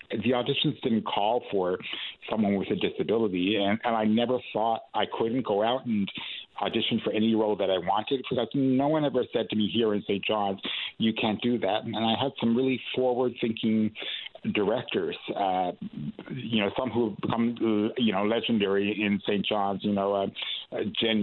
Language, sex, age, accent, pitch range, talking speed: English, male, 60-79, American, 100-115 Hz, 190 wpm